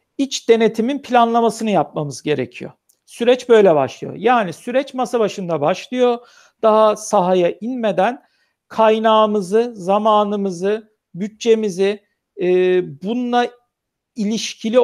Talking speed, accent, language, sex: 90 wpm, native, Turkish, male